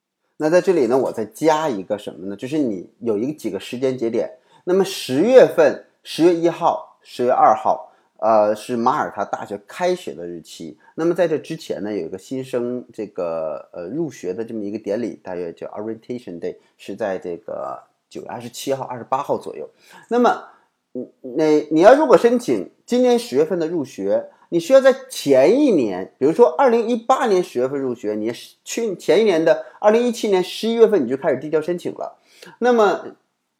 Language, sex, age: Chinese, male, 30-49